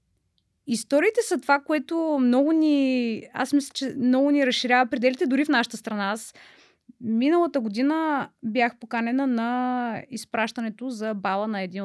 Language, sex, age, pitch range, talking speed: Bulgarian, female, 20-39, 215-280 Hz, 140 wpm